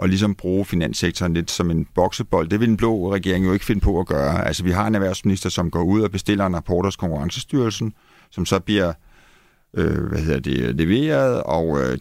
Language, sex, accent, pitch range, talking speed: Danish, male, native, 90-110 Hz, 215 wpm